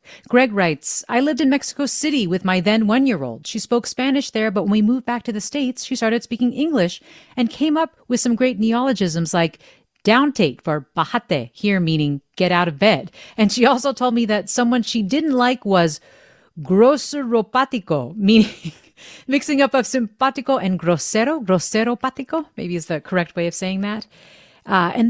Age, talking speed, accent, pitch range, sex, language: 40-59, 180 wpm, American, 185-255 Hz, female, English